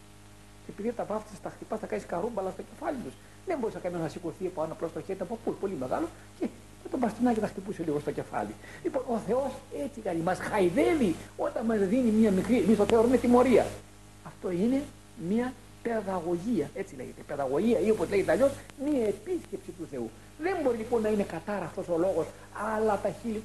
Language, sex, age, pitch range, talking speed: Greek, male, 60-79, 165-250 Hz, 195 wpm